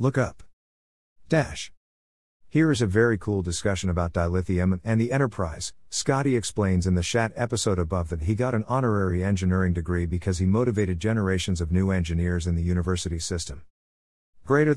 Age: 50-69